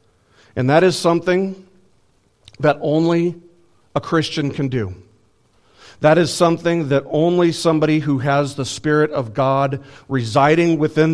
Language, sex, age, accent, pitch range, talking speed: English, male, 50-69, American, 110-150 Hz, 130 wpm